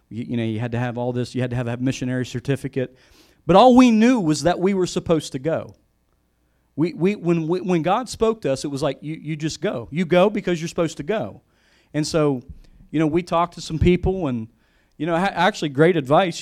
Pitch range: 130-175 Hz